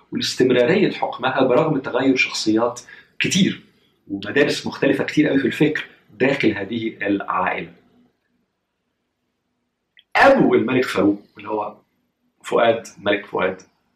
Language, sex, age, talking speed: Arabic, male, 40-59, 100 wpm